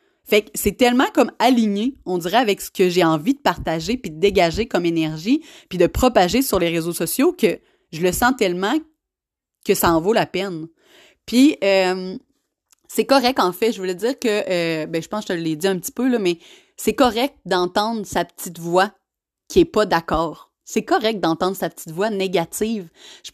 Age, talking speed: 30-49, 205 wpm